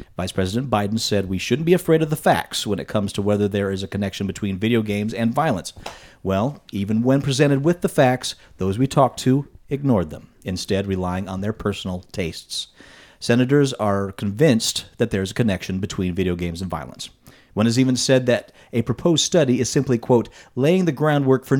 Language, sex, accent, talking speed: English, male, American, 200 wpm